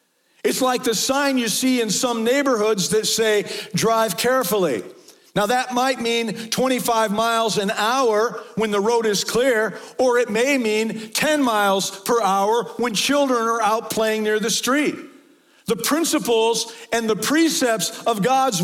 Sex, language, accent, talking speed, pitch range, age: male, English, American, 160 wpm, 205-245 Hz, 50-69